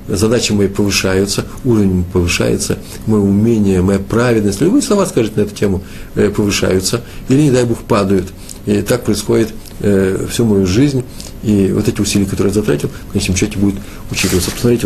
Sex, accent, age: male, native, 50-69